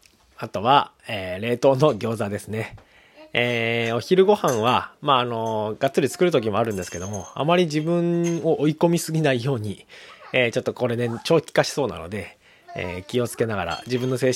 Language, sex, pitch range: Japanese, male, 100-145 Hz